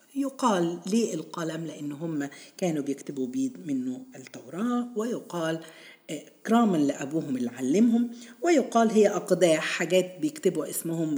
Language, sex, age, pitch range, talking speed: Arabic, female, 50-69, 150-240 Hz, 115 wpm